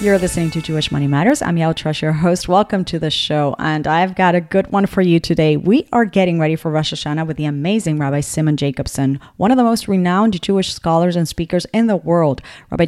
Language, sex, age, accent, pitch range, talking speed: English, female, 30-49, American, 160-215 Hz, 235 wpm